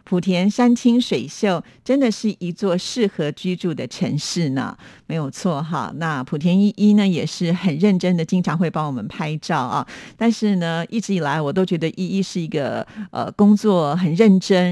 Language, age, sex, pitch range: Chinese, 50-69, female, 155-195 Hz